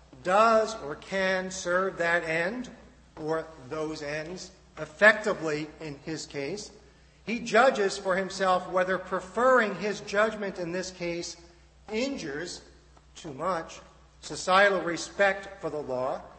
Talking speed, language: 115 wpm, English